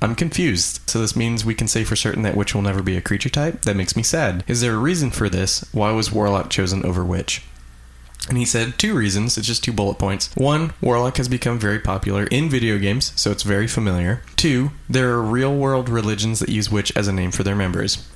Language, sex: English, male